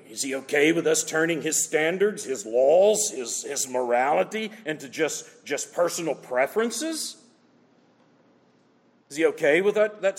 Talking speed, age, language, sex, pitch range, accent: 140 wpm, 50-69, English, male, 145-215 Hz, American